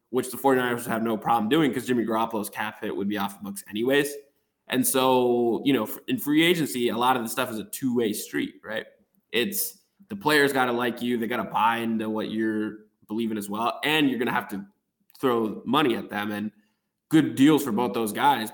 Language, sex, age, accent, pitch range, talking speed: English, male, 20-39, American, 105-130 Hz, 225 wpm